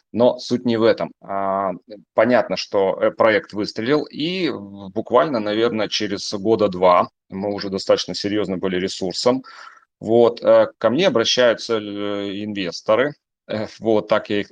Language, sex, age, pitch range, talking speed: Russian, male, 30-49, 100-115 Hz, 120 wpm